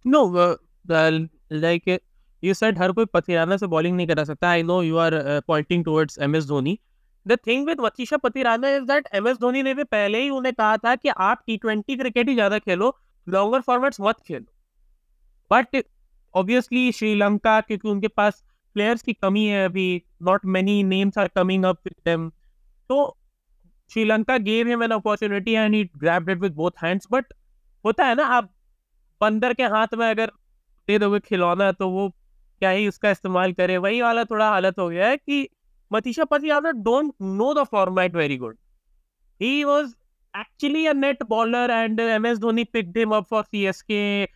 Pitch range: 185-245 Hz